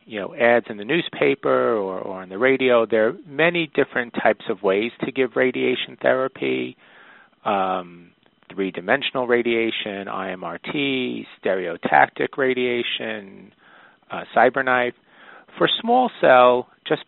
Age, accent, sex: 40-59, American, male